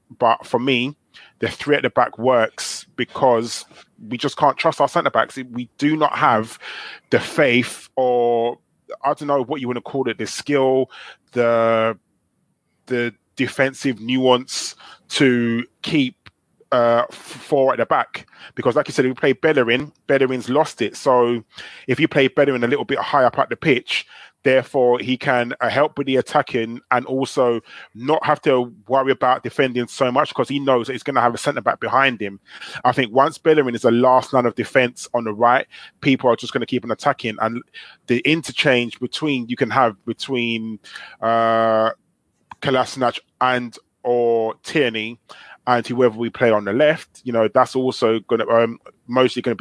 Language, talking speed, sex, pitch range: English, 180 wpm, male, 115-135 Hz